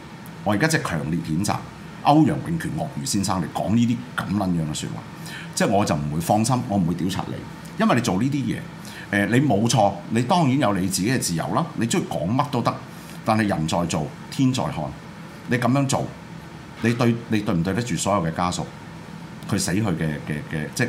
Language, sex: Chinese, male